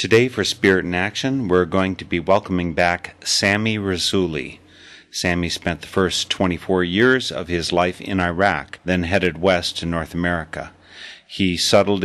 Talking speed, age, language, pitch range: 160 wpm, 40-59, English, 85-100 Hz